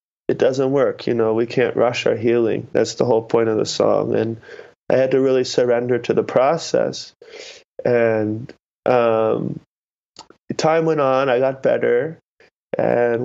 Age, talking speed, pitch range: 20-39, 160 wpm, 115-140 Hz